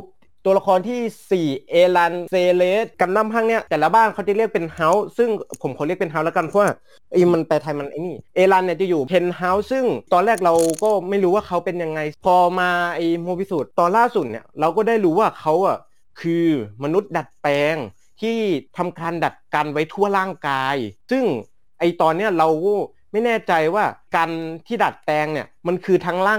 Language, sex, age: Thai, male, 30-49